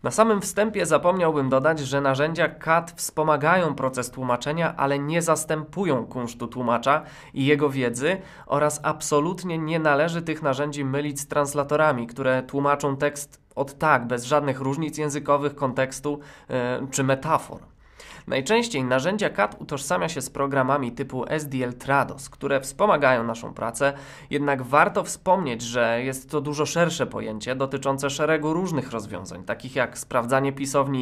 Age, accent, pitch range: 20-39, native, 130-160 Hz